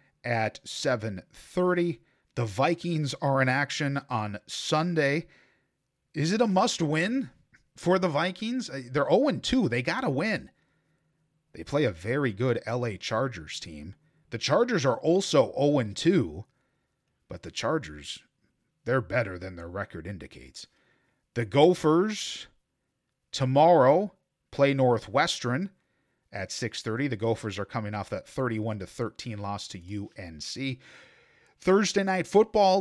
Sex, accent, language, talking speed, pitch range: male, American, English, 115 wpm, 110-155 Hz